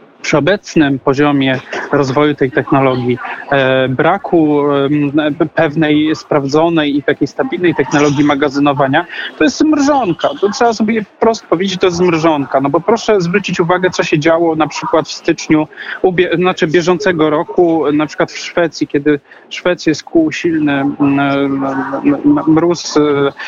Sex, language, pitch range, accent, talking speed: male, Polish, 145-175 Hz, native, 140 wpm